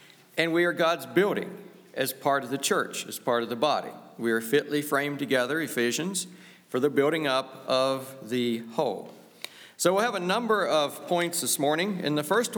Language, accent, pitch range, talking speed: English, American, 130-175 Hz, 190 wpm